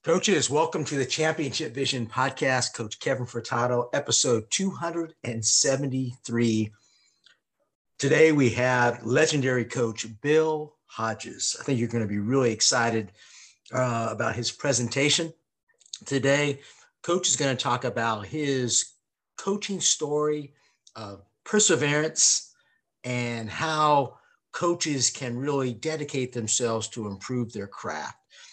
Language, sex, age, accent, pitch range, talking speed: English, male, 50-69, American, 115-140 Hz, 115 wpm